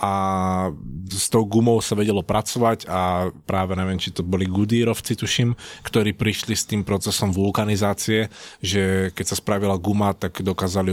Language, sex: Slovak, male